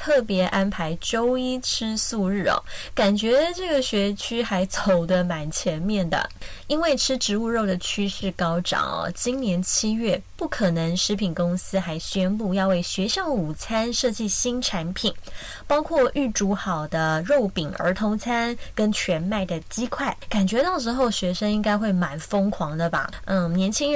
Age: 20-39